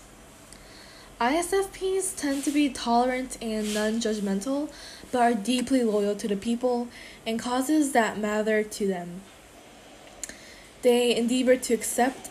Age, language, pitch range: 10-29, Korean, 215-245 Hz